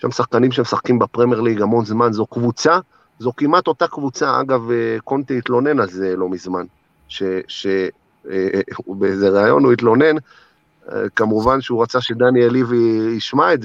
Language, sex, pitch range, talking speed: Hebrew, male, 115-150 Hz, 145 wpm